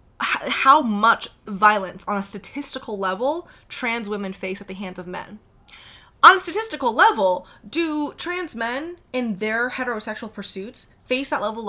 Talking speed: 150 wpm